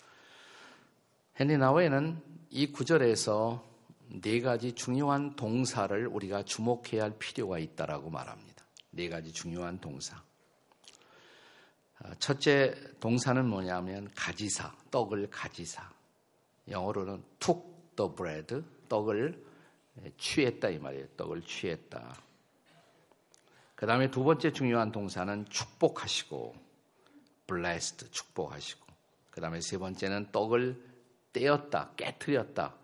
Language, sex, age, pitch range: Korean, male, 50-69, 100-135 Hz